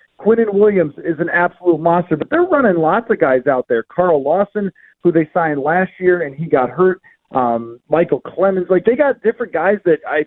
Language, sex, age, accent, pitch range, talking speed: English, male, 40-59, American, 150-190 Hz, 205 wpm